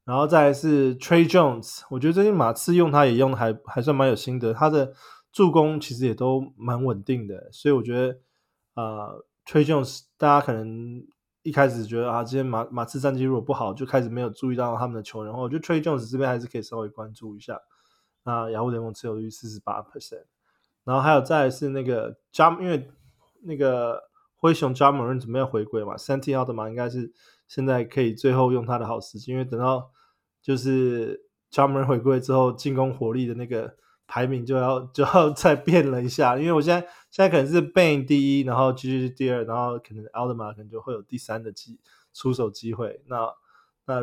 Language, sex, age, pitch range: Chinese, male, 20-39, 115-140 Hz